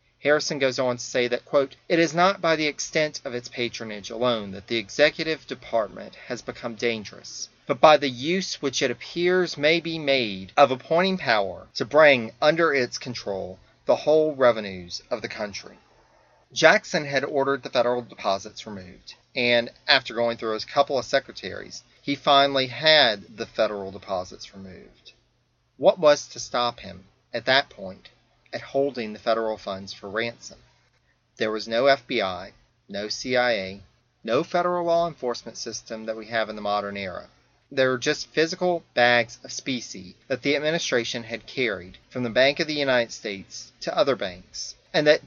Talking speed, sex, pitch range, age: 170 wpm, male, 115-150 Hz, 30-49